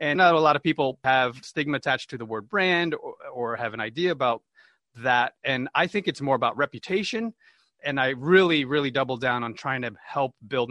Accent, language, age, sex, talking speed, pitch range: American, English, 30-49, male, 215 wpm, 120-150 Hz